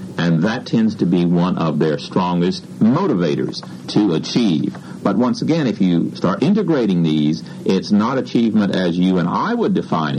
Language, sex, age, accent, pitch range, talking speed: English, male, 60-79, American, 90-135 Hz, 170 wpm